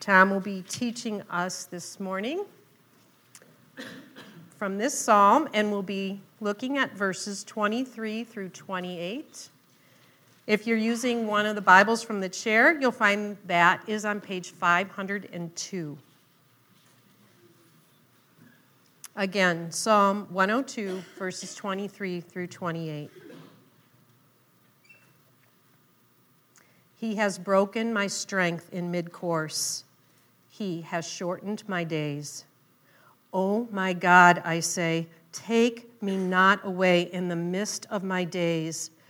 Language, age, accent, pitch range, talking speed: English, 40-59, American, 170-205 Hz, 110 wpm